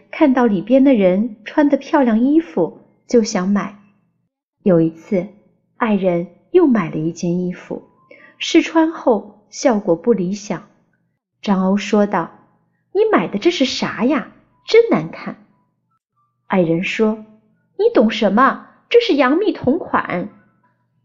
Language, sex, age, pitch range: Chinese, female, 30-49, 195-285 Hz